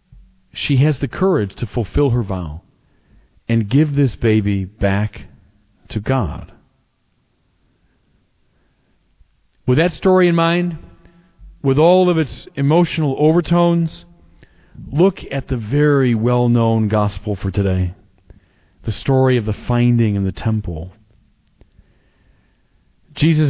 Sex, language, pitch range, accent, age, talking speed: male, English, 100-135 Hz, American, 40-59, 110 wpm